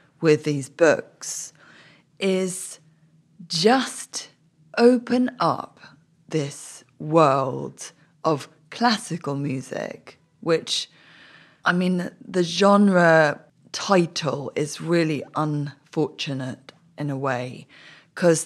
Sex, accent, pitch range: female, British, 150-180 Hz